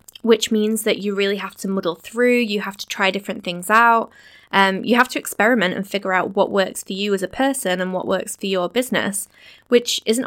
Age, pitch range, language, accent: 10-29, 195-230 Hz, English, British